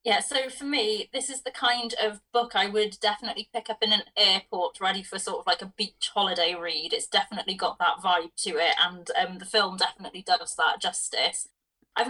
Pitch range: 195-235 Hz